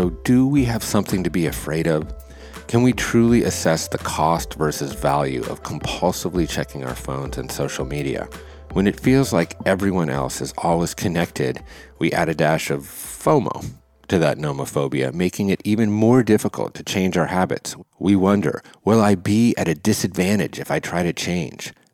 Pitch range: 75-105 Hz